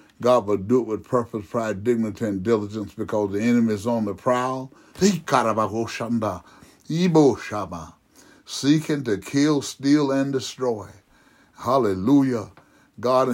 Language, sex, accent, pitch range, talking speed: English, male, American, 105-125 Hz, 115 wpm